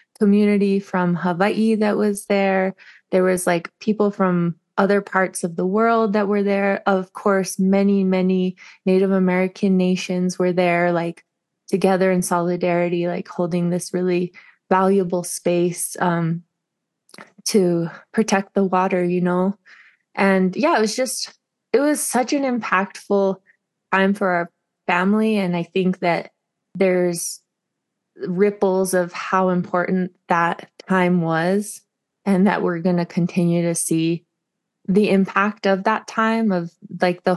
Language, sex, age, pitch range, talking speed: English, female, 20-39, 175-195 Hz, 140 wpm